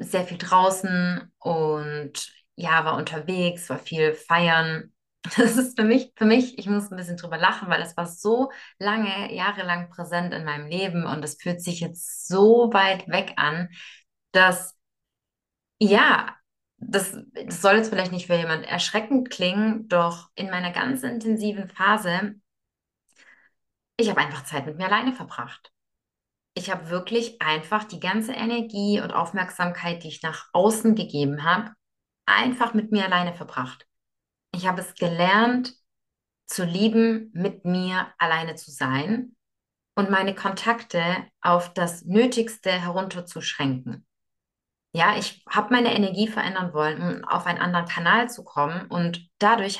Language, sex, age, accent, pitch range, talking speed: German, female, 20-39, German, 170-215 Hz, 145 wpm